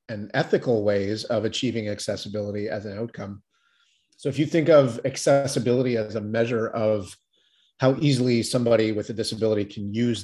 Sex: male